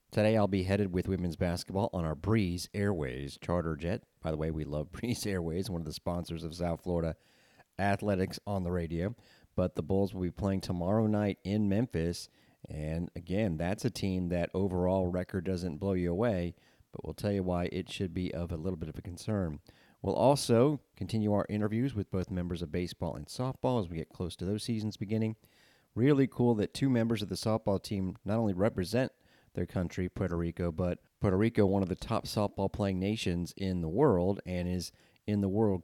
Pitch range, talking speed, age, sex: 85-100 Hz, 205 wpm, 40-59, male